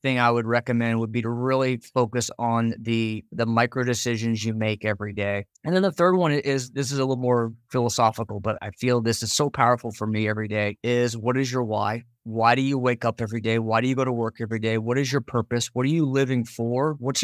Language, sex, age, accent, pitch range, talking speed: English, male, 20-39, American, 115-135 Hz, 245 wpm